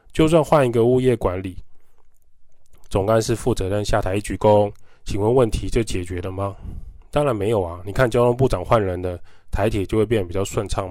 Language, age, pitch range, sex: Chinese, 20-39, 100-120 Hz, male